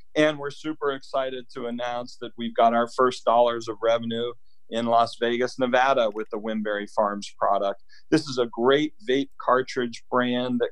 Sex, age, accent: male, 40-59, American